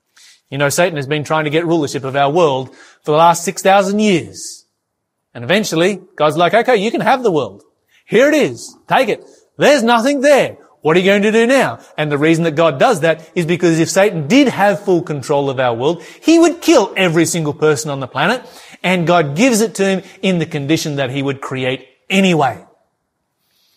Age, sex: 30-49, male